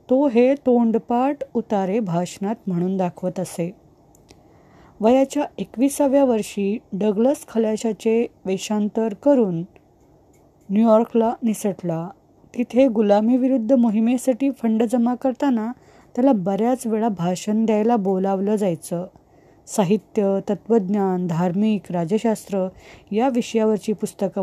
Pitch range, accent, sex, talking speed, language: 180-235 Hz, native, female, 90 wpm, Marathi